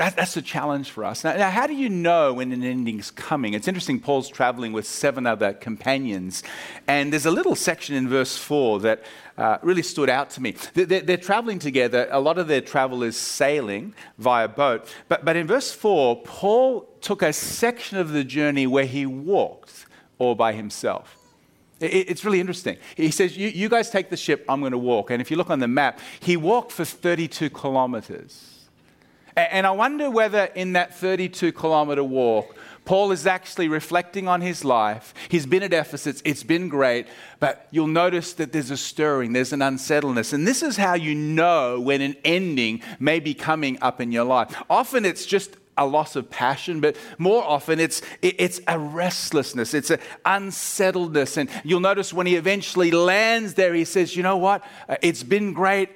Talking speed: 190 wpm